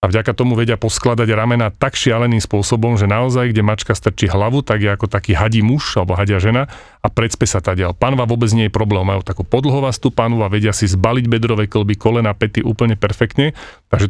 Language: Slovak